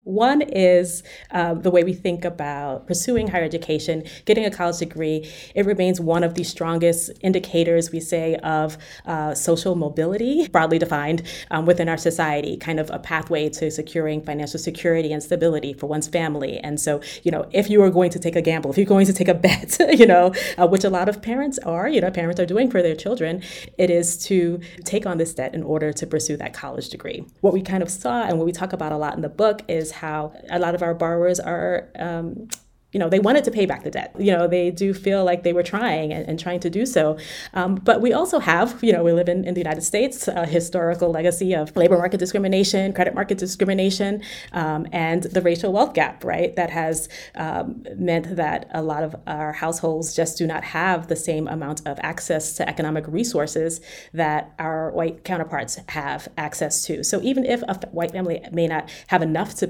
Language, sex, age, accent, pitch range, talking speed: English, female, 30-49, American, 160-190 Hz, 215 wpm